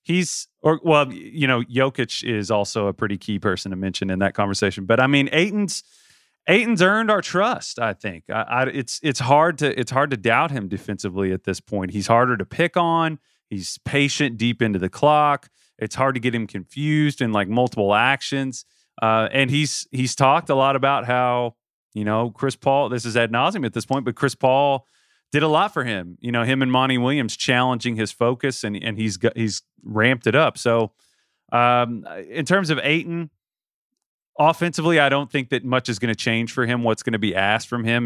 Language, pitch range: English, 105-135 Hz